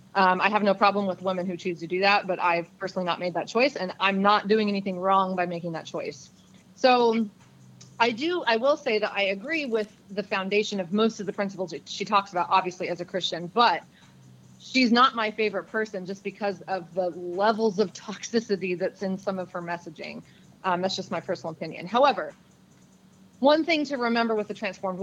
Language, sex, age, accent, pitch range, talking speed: English, female, 30-49, American, 185-230 Hz, 210 wpm